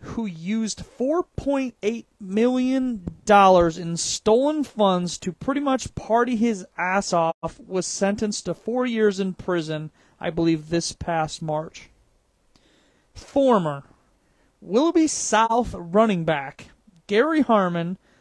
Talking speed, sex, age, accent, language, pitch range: 110 wpm, male, 30-49, American, English, 180-235 Hz